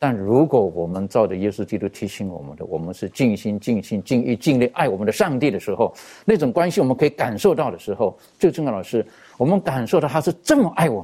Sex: male